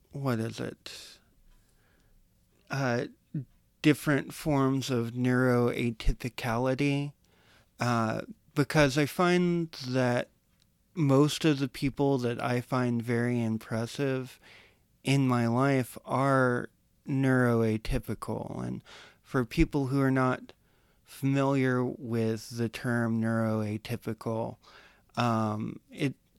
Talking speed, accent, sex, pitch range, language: 90 wpm, American, male, 115-140 Hz, English